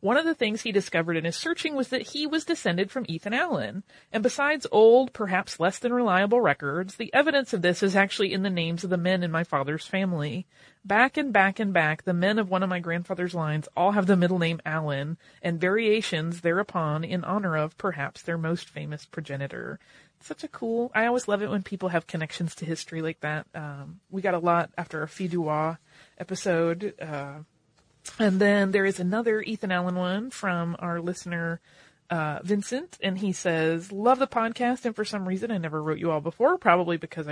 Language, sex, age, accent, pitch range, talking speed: English, female, 30-49, American, 165-215 Hz, 205 wpm